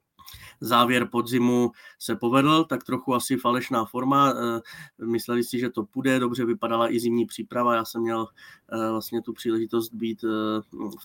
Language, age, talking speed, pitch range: Czech, 20-39, 145 wpm, 115-125 Hz